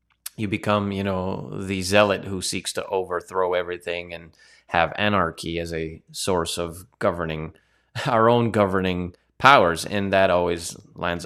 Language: English